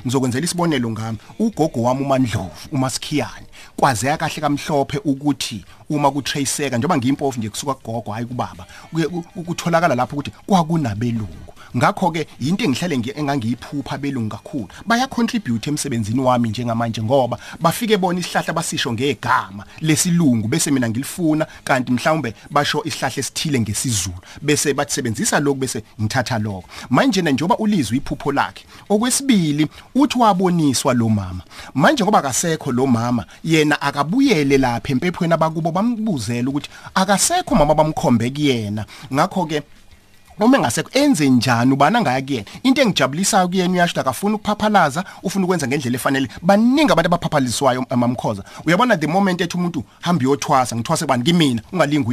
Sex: male